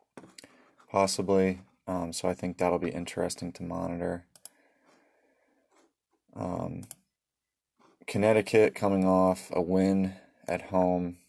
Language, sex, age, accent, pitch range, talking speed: English, male, 20-39, American, 90-95 Hz, 95 wpm